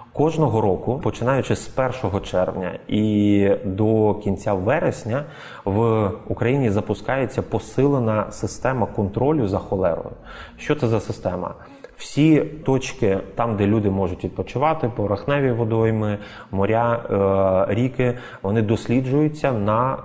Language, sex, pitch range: Ukrainian, male, 100-125 Hz